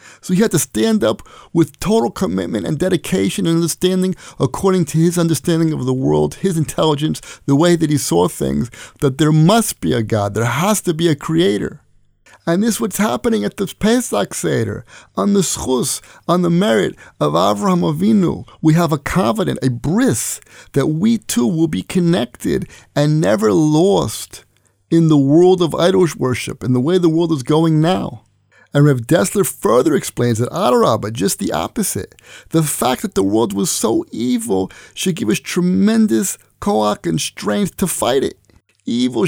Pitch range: 130-190 Hz